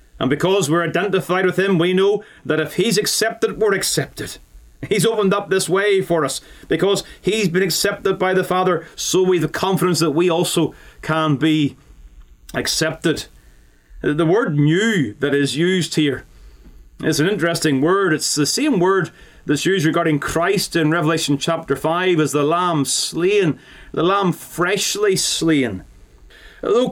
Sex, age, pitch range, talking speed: male, 30-49, 145-190 Hz, 160 wpm